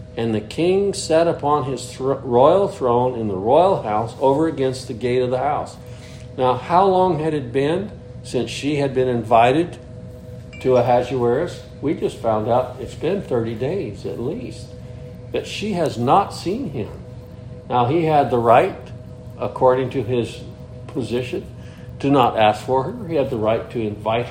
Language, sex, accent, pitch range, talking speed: English, male, American, 125-155 Hz, 170 wpm